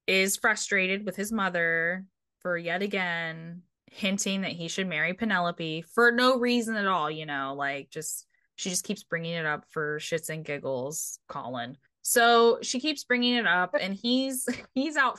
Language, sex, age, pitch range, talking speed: English, female, 10-29, 175-235 Hz, 175 wpm